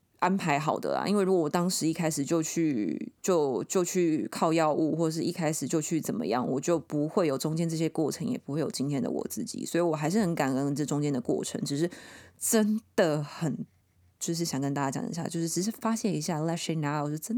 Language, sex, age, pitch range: Chinese, female, 20-39, 150-190 Hz